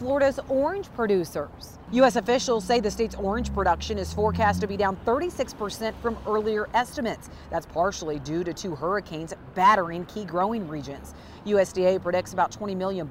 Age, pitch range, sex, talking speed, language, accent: 40-59, 185-245 Hz, female, 155 wpm, English, American